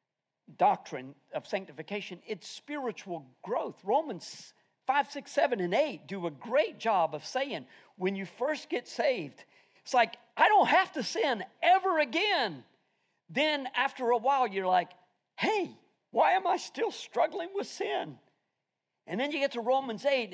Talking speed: 155 wpm